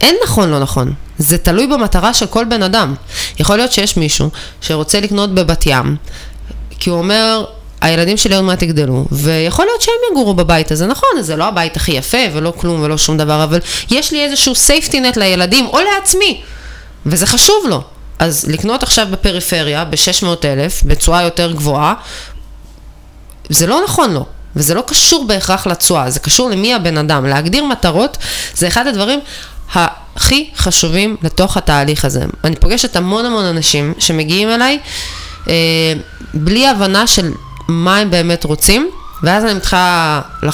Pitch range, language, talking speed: 160-225 Hz, Hebrew, 150 wpm